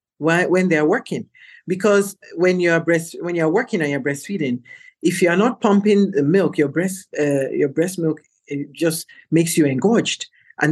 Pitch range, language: 145-175 Hz, English